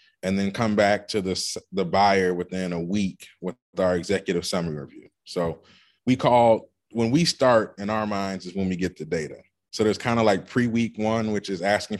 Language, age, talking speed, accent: English, 20-39, 205 wpm, American